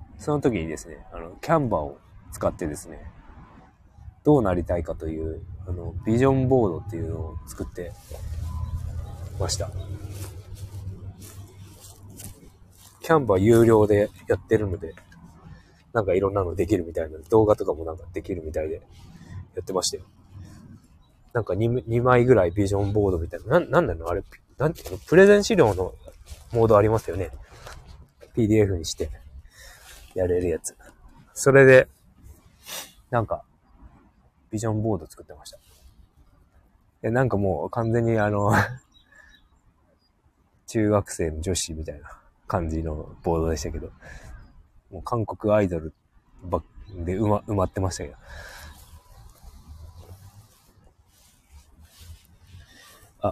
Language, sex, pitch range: Japanese, male, 85-105 Hz